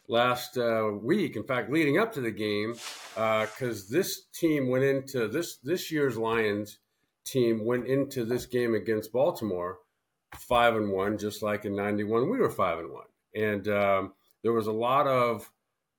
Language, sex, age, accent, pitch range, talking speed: English, male, 50-69, American, 110-135 Hz, 175 wpm